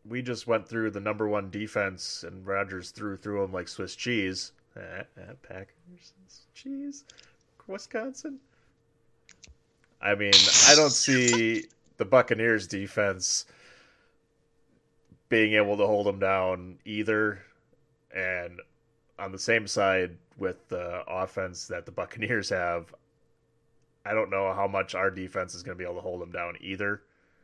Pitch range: 90-105 Hz